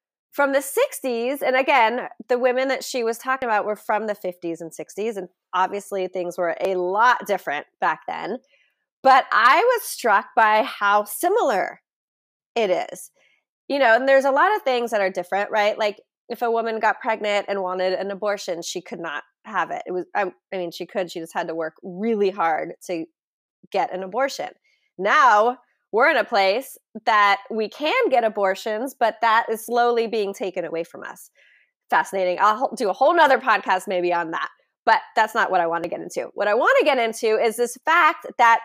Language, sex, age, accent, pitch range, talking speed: English, female, 20-39, American, 195-260 Hz, 200 wpm